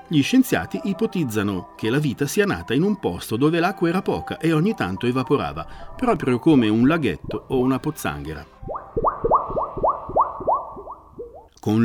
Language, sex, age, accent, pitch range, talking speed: Italian, male, 50-69, native, 110-180 Hz, 135 wpm